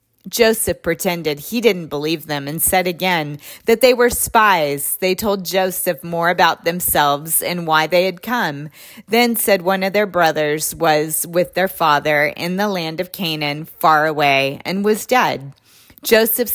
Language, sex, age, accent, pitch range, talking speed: English, female, 30-49, American, 155-190 Hz, 165 wpm